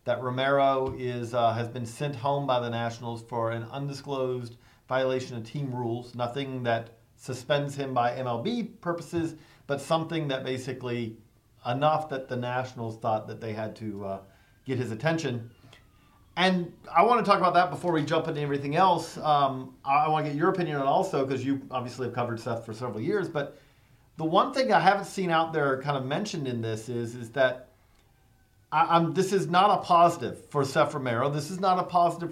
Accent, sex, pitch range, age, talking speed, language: American, male, 120-170 Hz, 40-59, 195 wpm, English